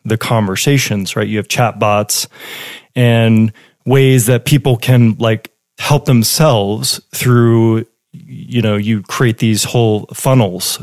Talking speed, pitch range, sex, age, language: 130 wpm, 110-130 Hz, male, 30-49, English